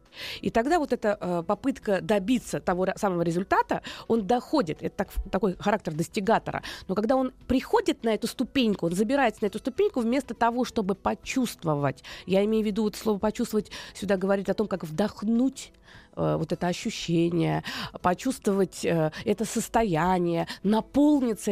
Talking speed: 155 wpm